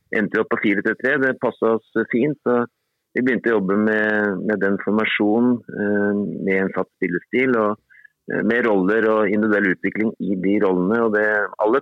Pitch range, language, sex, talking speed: 100-115 Hz, English, male, 155 wpm